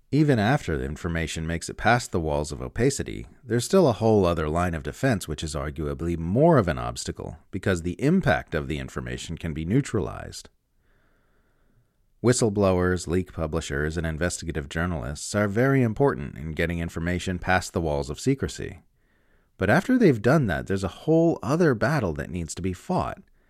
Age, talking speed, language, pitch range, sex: 40-59, 170 wpm, English, 80-120 Hz, male